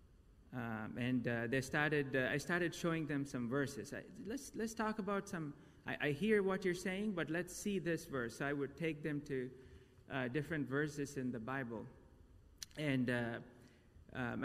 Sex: male